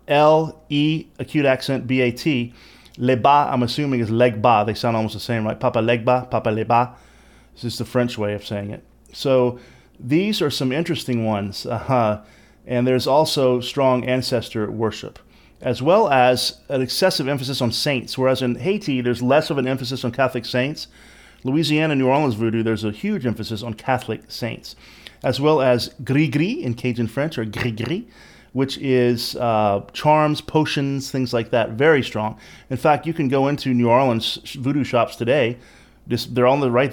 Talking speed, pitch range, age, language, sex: 185 wpm, 120-140 Hz, 30-49, English, male